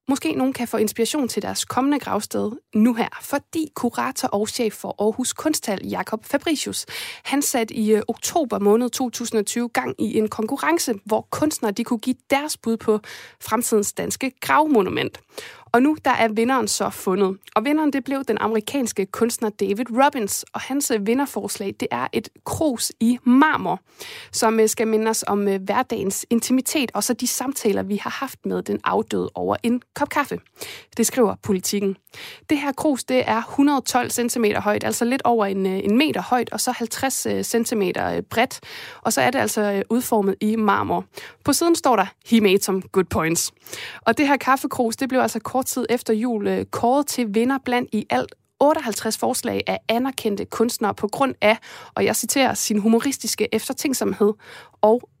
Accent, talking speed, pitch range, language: native, 170 wpm, 215-270 Hz, Danish